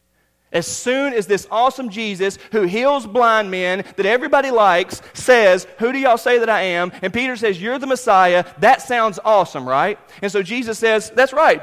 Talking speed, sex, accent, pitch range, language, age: 190 wpm, male, American, 180-225 Hz, English, 40-59